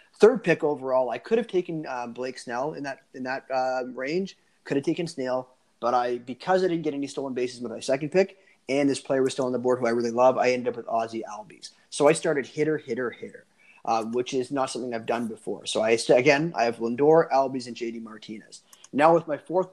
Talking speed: 240 wpm